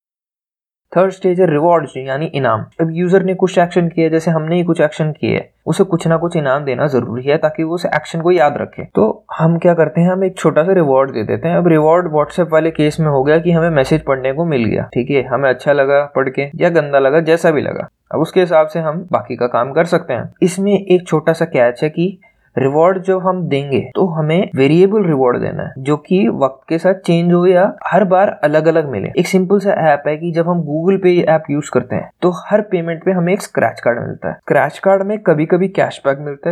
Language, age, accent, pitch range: Hindi, 20-39, native, 145-180 Hz